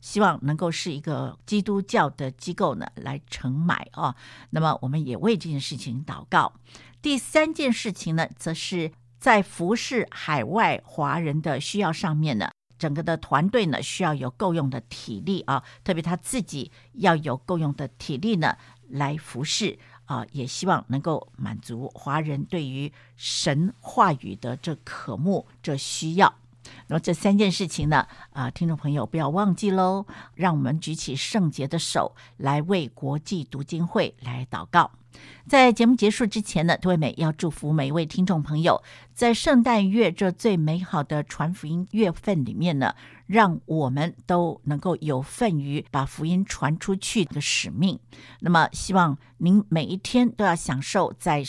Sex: female